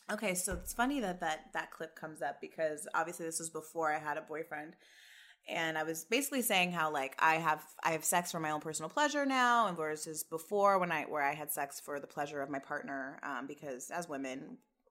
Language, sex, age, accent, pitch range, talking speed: English, female, 20-39, American, 155-200 Hz, 220 wpm